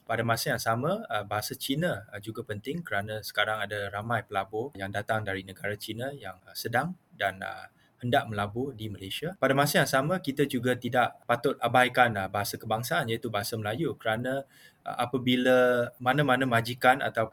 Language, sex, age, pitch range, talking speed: English, male, 20-39, 105-130 Hz, 150 wpm